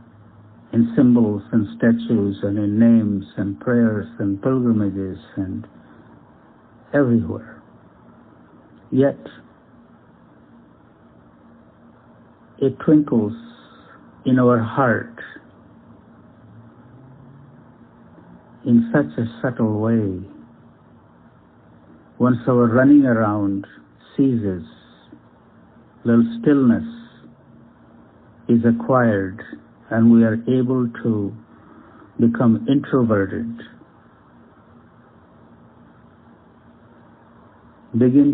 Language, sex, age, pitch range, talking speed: English, male, 60-79, 105-130 Hz, 65 wpm